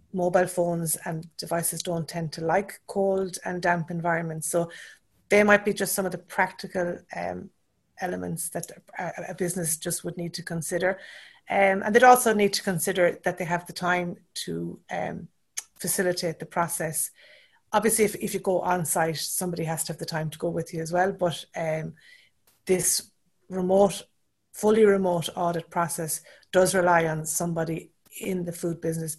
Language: English